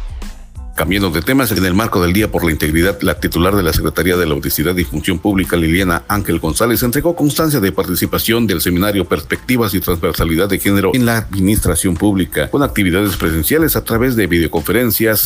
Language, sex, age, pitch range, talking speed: Spanish, male, 50-69, 85-105 Hz, 185 wpm